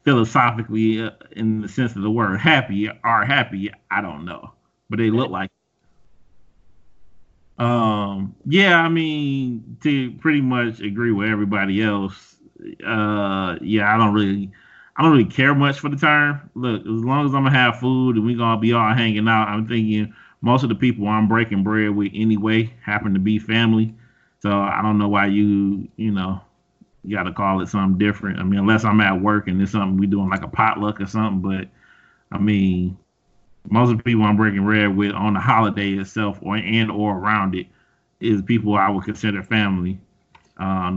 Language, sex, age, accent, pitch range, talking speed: English, male, 30-49, American, 95-115 Hz, 190 wpm